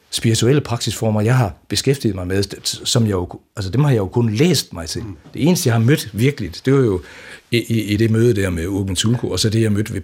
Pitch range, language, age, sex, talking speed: 105-140 Hz, Danish, 60-79, male, 240 wpm